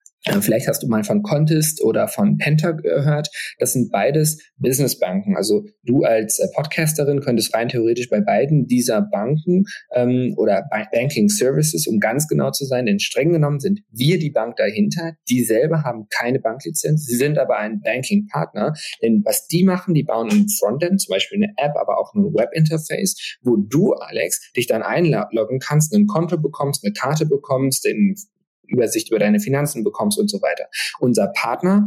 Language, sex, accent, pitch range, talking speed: German, male, German, 130-200 Hz, 175 wpm